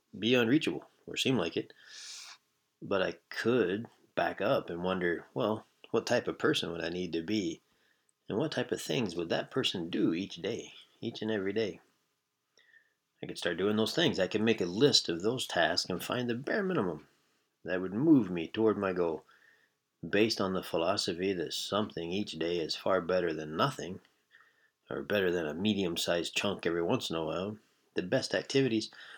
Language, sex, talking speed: English, male, 185 wpm